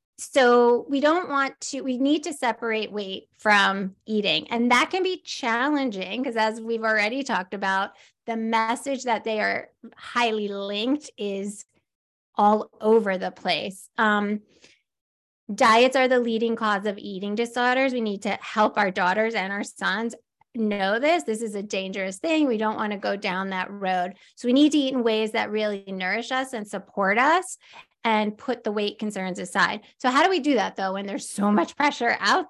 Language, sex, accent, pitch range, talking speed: English, female, American, 205-250 Hz, 185 wpm